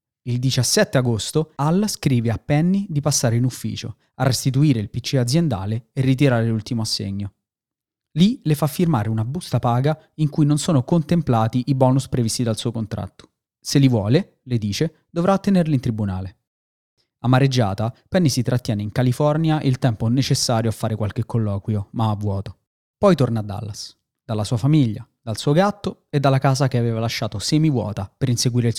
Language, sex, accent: Italian, male, native